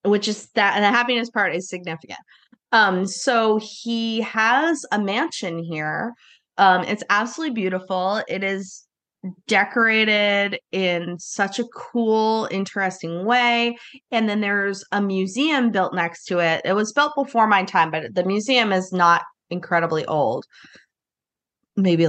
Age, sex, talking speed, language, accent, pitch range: 20-39, female, 140 wpm, English, American, 175-220 Hz